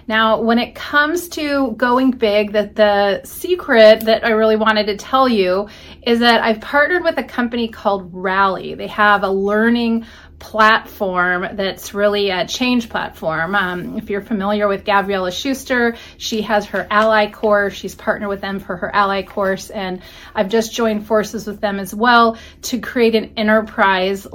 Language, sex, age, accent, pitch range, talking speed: English, female, 30-49, American, 205-255 Hz, 170 wpm